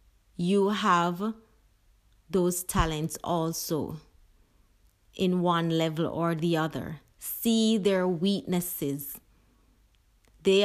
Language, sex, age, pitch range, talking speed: English, female, 30-49, 155-190 Hz, 85 wpm